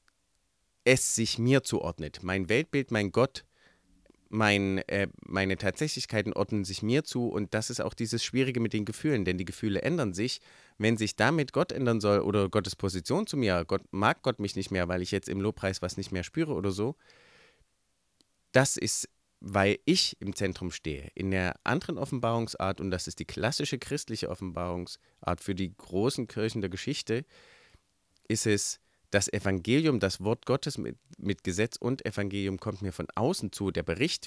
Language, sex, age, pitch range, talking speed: German, male, 30-49, 95-120 Hz, 175 wpm